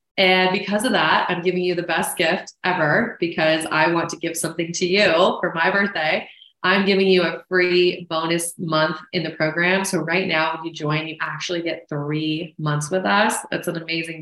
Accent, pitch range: American, 165-195 Hz